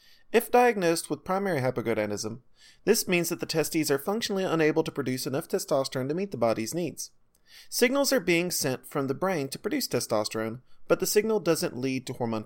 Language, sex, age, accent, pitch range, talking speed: English, male, 30-49, American, 125-190 Hz, 190 wpm